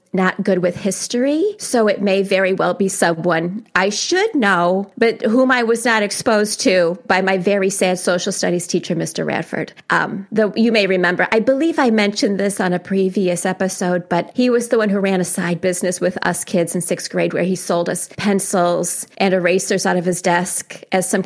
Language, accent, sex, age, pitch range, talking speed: English, American, female, 30-49, 180-215 Hz, 205 wpm